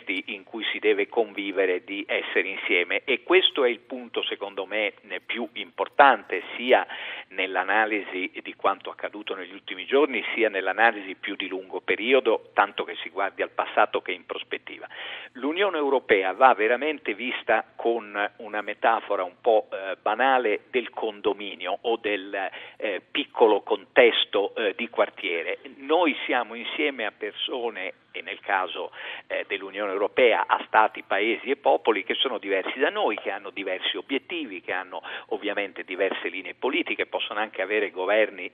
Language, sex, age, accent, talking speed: Italian, male, 50-69, native, 145 wpm